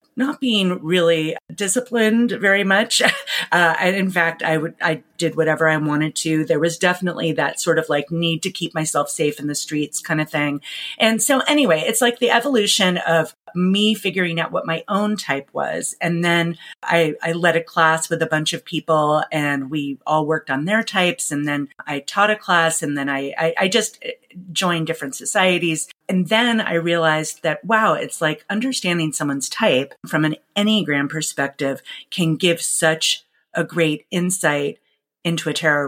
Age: 30-49